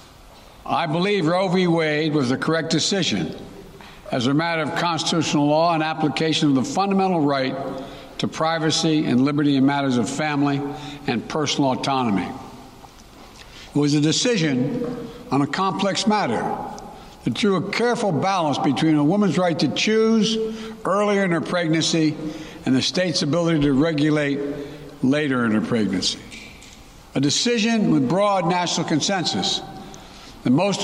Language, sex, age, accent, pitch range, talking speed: English, male, 60-79, American, 145-185 Hz, 140 wpm